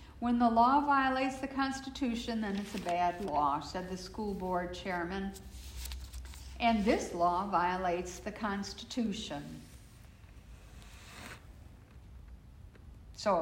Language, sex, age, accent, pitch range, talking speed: English, female, 60-79, American, 185-240 Hz, 105 wpm